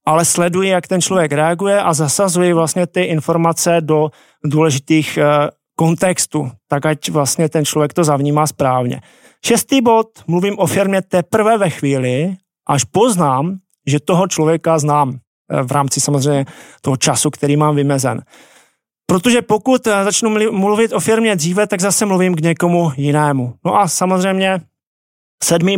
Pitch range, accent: 150-185 Hz, native